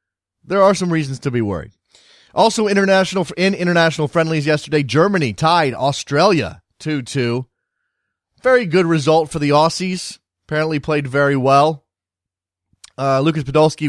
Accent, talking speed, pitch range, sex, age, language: American, 130 wpm, 135-180 Hz, male, 30-49, English